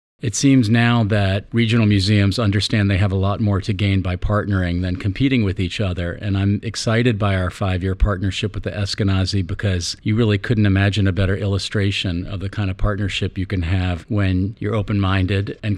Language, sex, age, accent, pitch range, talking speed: English, male, 50-69, American, 95-105 Hz, 195 wpm